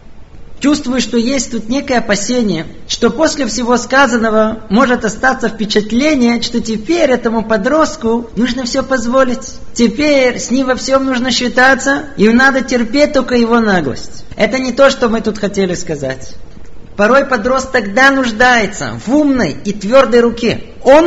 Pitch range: 210-260 Hz